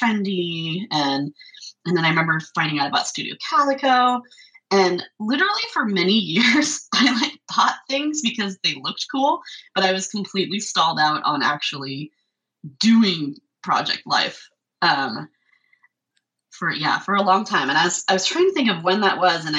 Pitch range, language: 155-240 Hz, English